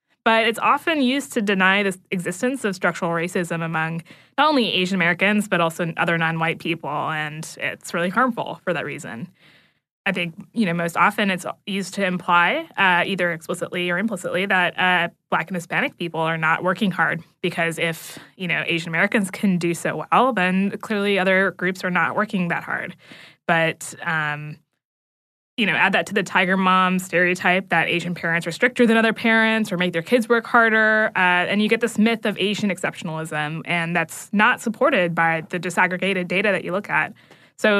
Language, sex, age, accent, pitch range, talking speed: English, female, 20-39, American, 170-205 Hz, 185 wpm